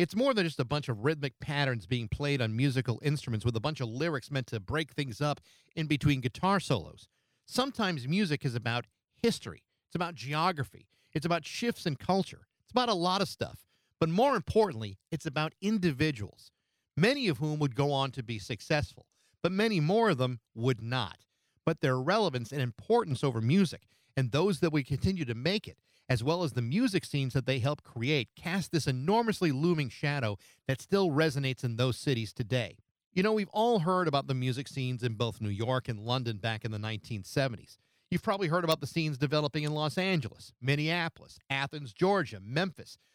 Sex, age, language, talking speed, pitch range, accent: male, 50-69, English, 195 wpm, 125-175 Hz, American